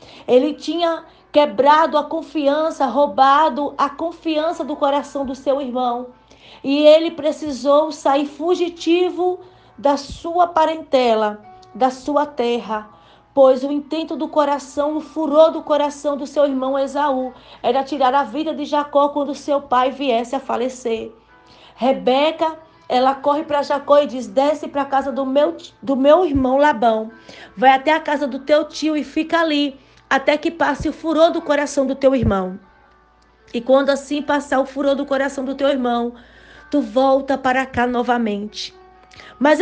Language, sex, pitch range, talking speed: Portuguese, female, 265-310 Hz, 155 wpm